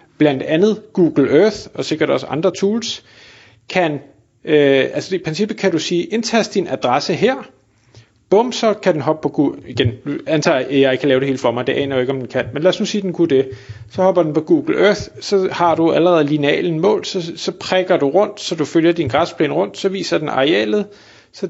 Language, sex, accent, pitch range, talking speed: Danish, male, native, 135-185 Hz, 230 wpm